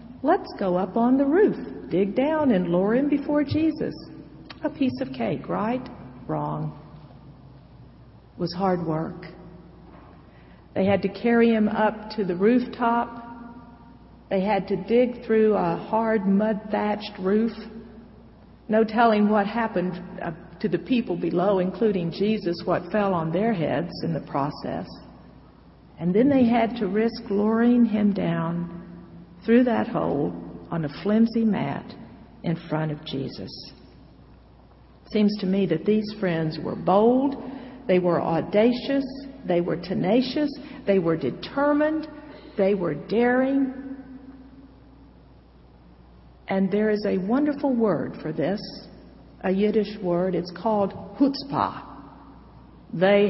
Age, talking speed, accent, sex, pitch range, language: 50-69, 130 wpm, American, female, 175-235 Hz, English